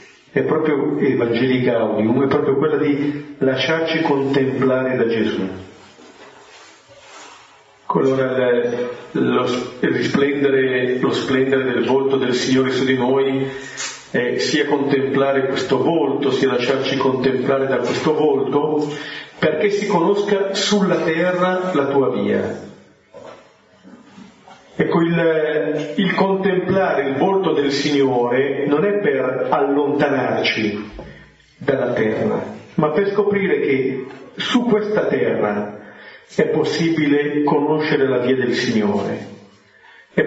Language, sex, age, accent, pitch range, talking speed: Italian, male, 40-59, native, 130-155 Hz, 105 wpm